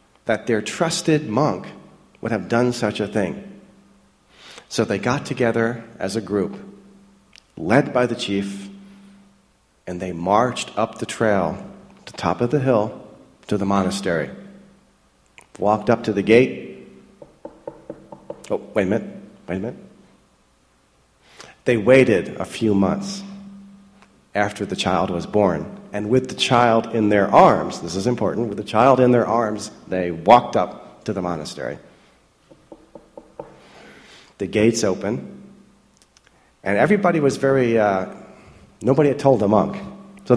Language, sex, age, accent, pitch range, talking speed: English, male, 40-59, American, 105-155 Hz, 140 wpm